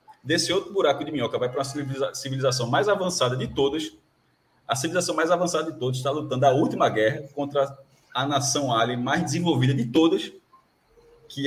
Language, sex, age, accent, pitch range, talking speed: Portuguese, male, 20-39, Brazilian, 135-175 Hz, 175 wpm